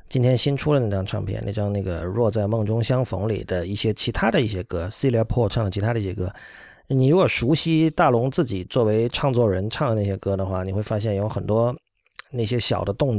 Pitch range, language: 105-140 Hz, Chinese